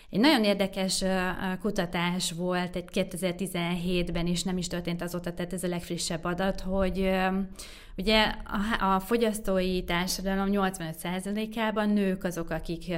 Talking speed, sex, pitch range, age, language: 120 wpm, female, 170-200 Hz, 20-39, Hungarian